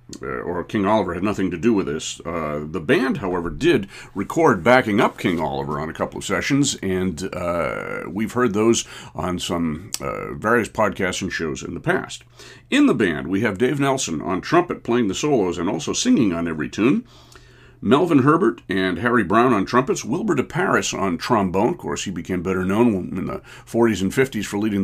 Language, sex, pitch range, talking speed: English, male, 90-115 Hz, 195 wpm